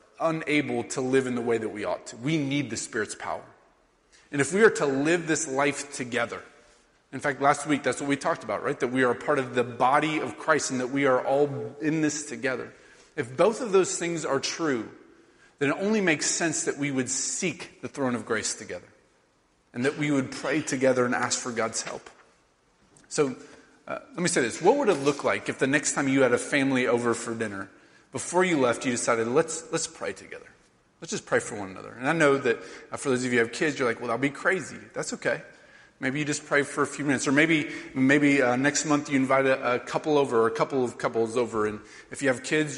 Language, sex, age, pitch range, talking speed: English, male, 30-49, 130-155 Hz, 240 wpm